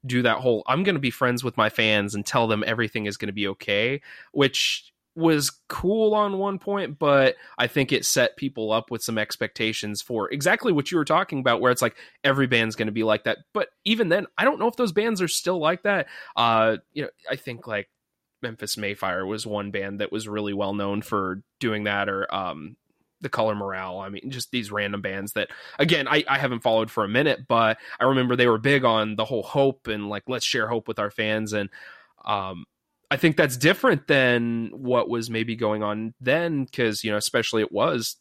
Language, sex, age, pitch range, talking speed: English, male, 20-39, 110-140 Hz, 220 wpm